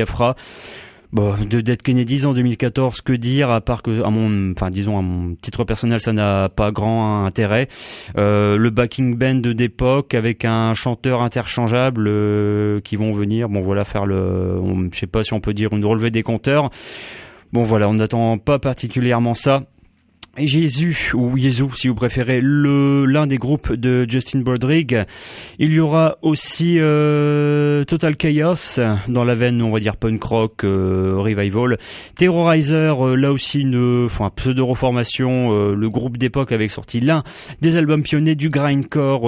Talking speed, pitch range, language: 170 wpm, 110-135 Hz, English